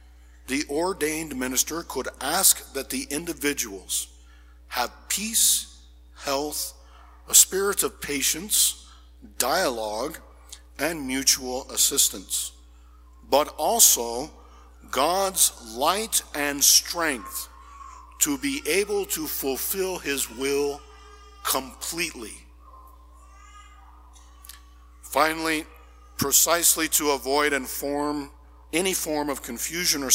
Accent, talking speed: American, 90 wpm